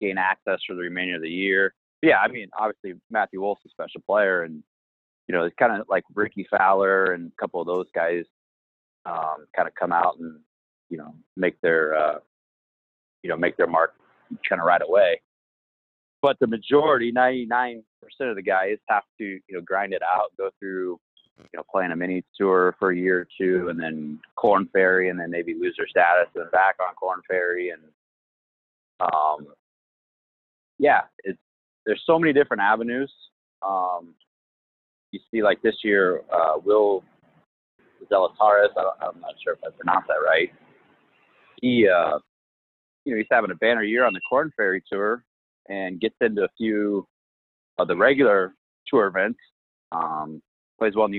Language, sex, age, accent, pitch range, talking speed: English, male, 30-49, American, 80-105 Hz, 175 wpm